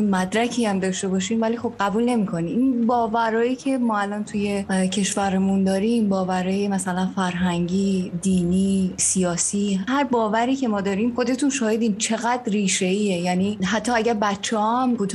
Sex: female